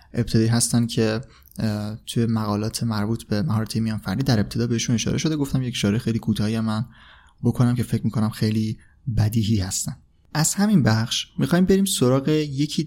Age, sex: 30-49, male